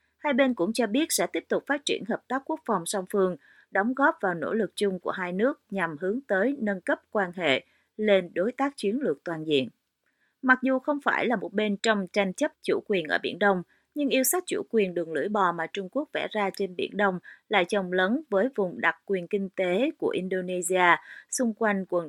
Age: 30-49